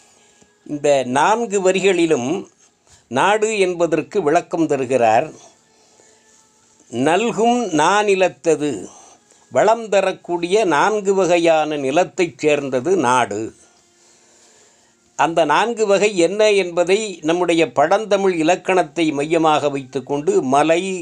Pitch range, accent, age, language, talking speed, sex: 150-195 Hz, native, 60-79, Tamil, 80 wpm, male